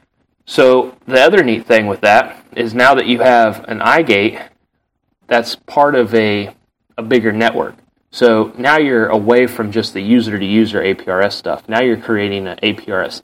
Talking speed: 165 wpm